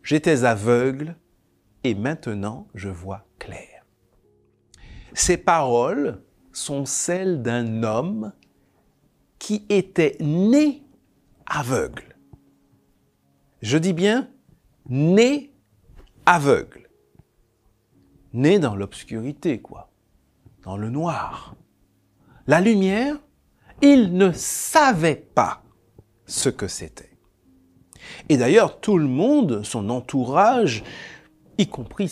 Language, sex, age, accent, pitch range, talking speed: French, male, 60-79, French, 105-170 Hz, 90 wpm